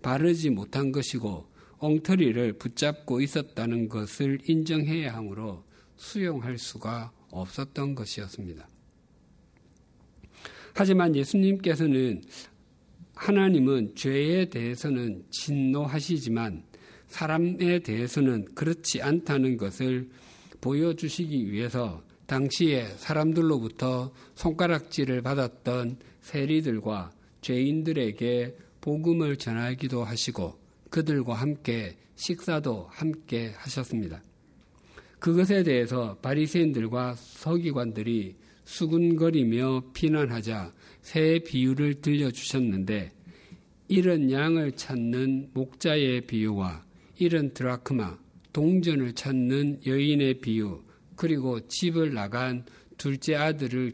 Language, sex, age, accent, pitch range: Korean, male, 50-69, native, 115-155 Hz